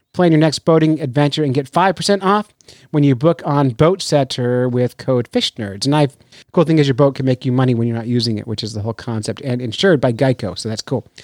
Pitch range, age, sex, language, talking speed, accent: 125-170 Hz, 30-49, male, English, 245 wpm, American